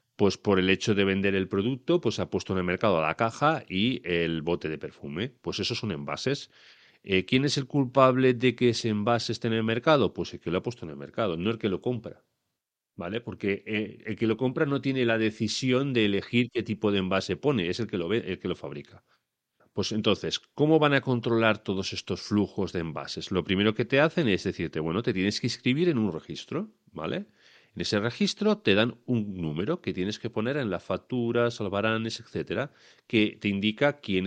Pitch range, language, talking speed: 90-120 Hz, Spanish, 220 wpm